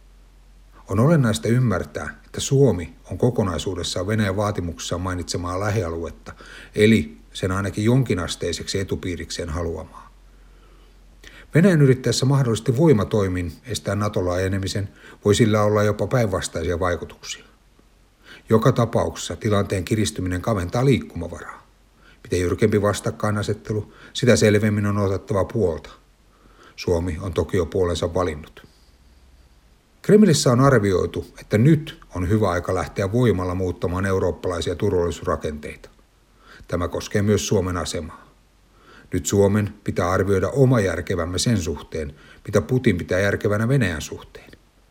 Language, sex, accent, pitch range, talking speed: Finnish, male, native, 90-115 Hz, 110 wpm